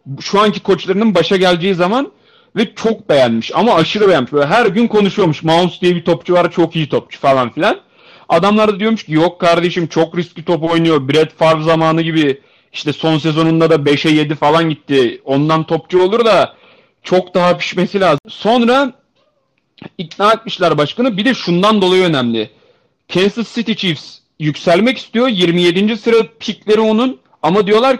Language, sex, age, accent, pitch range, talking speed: Turkish, male, 40-59, native, 160-215 Hz, 160 wpm